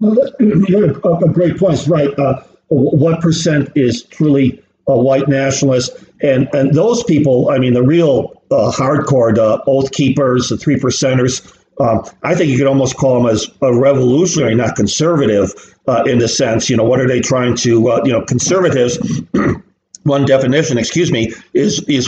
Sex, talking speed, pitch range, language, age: male, 170 wpm, 120-145 Hz, English, 50-69